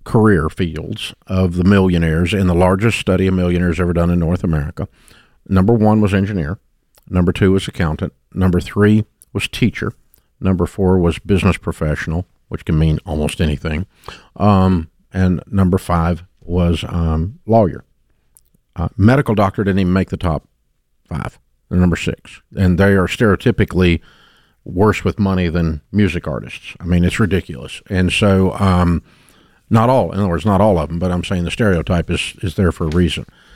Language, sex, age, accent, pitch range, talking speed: English, male, 50-69, American, 90-115 Hz, 165 wpm